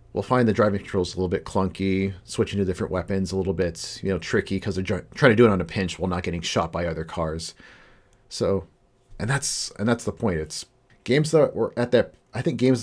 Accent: American